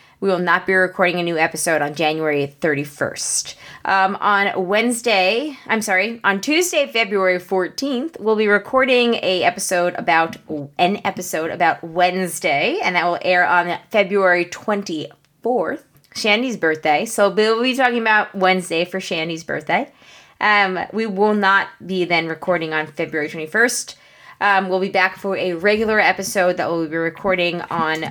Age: 20-39